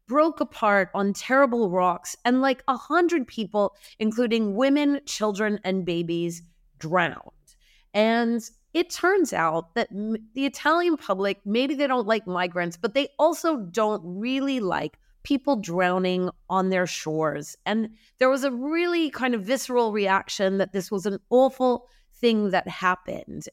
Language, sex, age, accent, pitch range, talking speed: English, female, 30-49, American, 195-255 Hz, 145 wpm